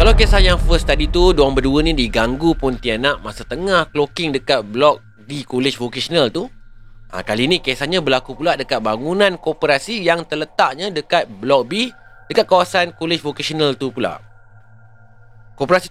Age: 30-49